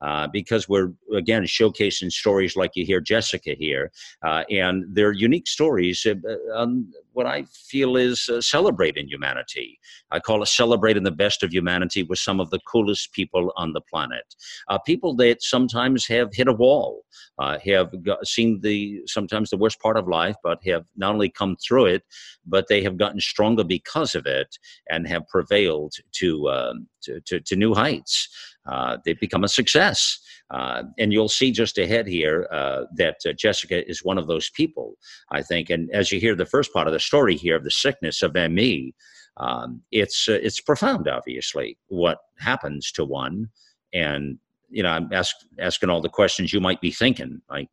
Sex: male